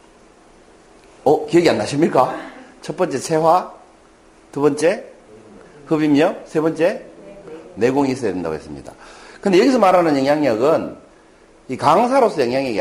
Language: Korean